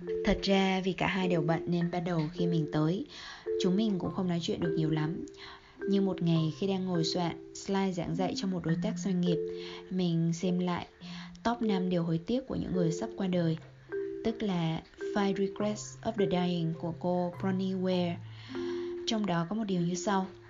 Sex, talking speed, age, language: female, 205 wpm, 20-39, Vietnamese